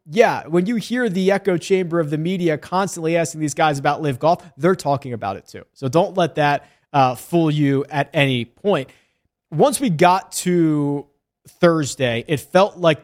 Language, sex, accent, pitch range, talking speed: English, male, American, 140-175 Hz, 185 wpm